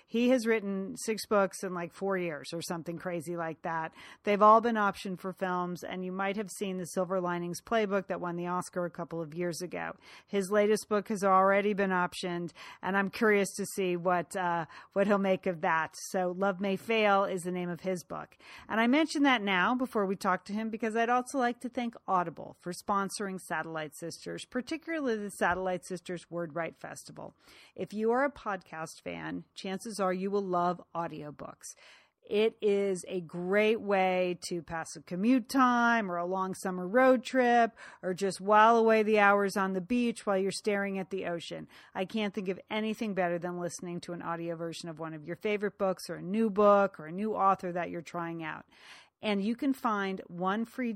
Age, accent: 40-59, American